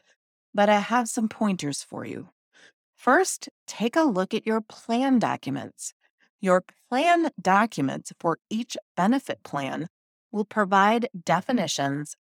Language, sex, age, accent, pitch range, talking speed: English, female, 30-49, American, 160-215 Hz, 125 wpm